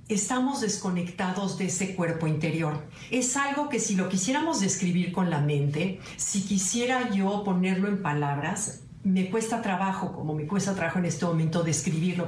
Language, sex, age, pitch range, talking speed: Spanish, female, 50-69, 175-210 Hz, 160 wpm